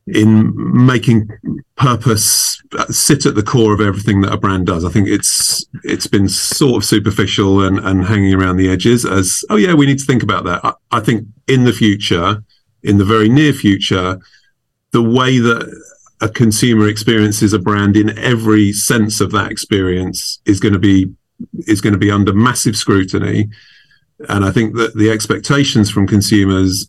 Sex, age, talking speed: male, 40-59, 180 wpm